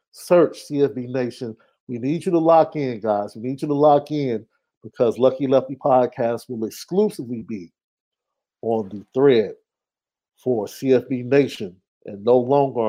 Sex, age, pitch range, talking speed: male, 50-69, 120-155 Hz, 150 wpm